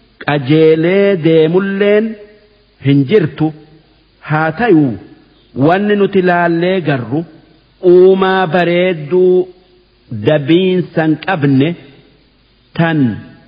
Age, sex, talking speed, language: 50-69, male, 55 wpm, Arabic